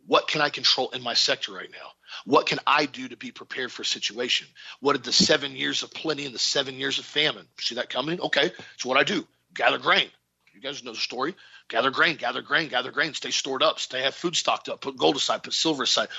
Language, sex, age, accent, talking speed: English, male, 40-59, American, 250 wpm